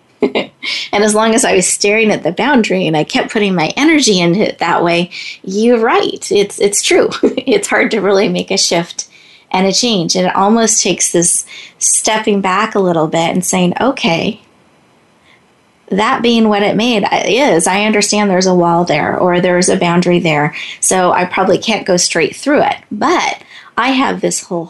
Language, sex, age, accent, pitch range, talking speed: English, female, 30-49, American, 185-220 Hz, 190 wpm